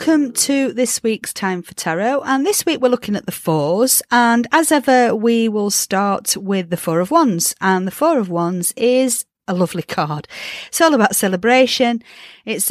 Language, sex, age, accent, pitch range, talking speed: English, female, 40-59, British, 170-245 Hz, 190 wpm